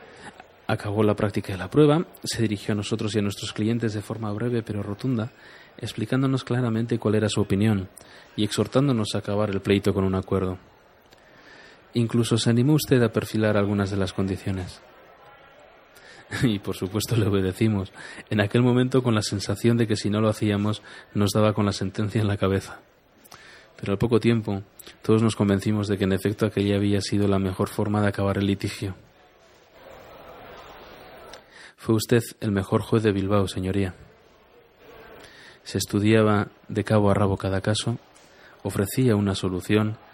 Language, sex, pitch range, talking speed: Spanish, male, 100-110 Hz, 165 wpm